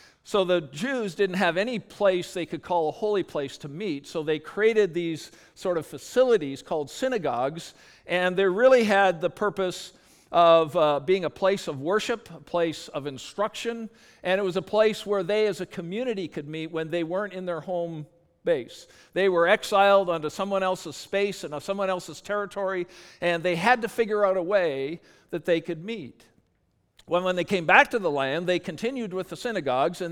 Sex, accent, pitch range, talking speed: male, American, 160-200 Hz, 195 wpm